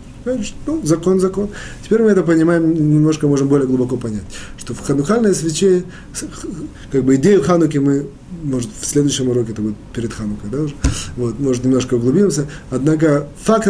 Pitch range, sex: 130-180 Hz, male